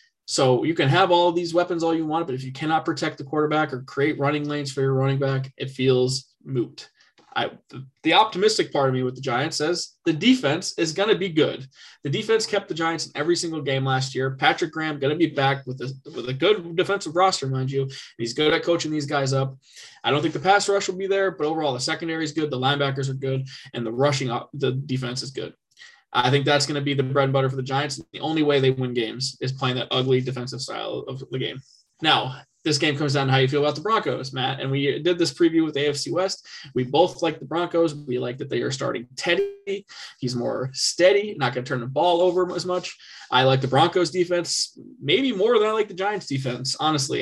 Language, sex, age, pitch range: English, male, 20-39, 135-165 Hz